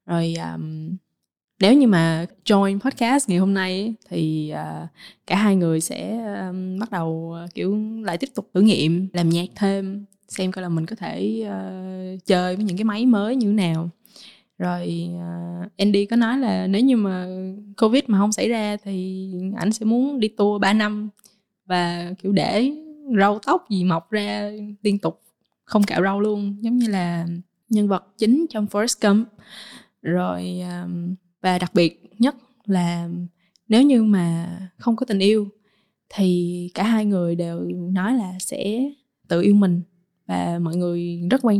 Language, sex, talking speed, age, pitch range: Vietnamese, female, 170 wpm, 20-39, 175-215 Hz